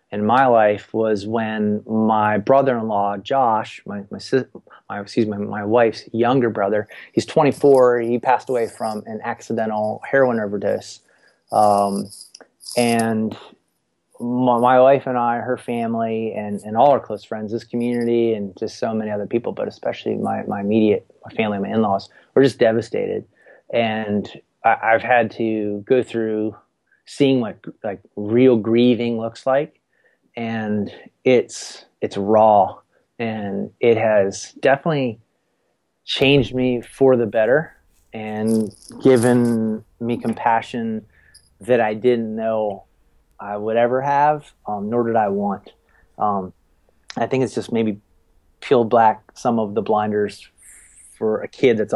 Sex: male